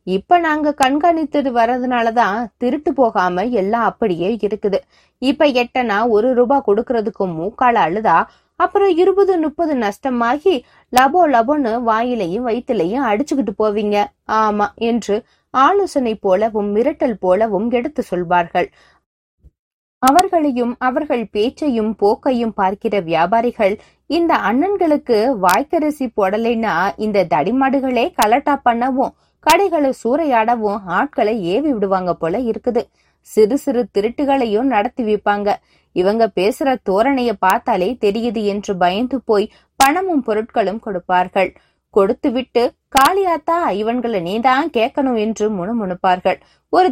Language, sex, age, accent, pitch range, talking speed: Tamil, female, 20-39, native, 210-275 Hz, 90 wpm